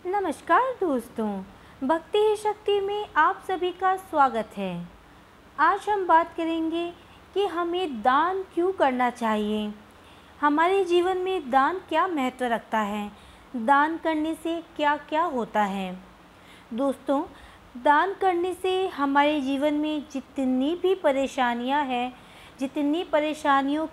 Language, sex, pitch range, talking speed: Hindi, female, 270-345 Hz, 120 wpm